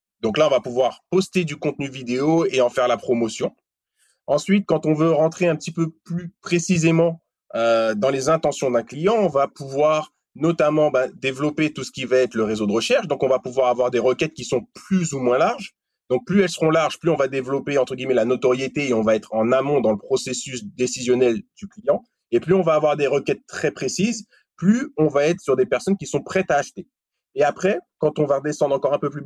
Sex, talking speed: male, 235 wpm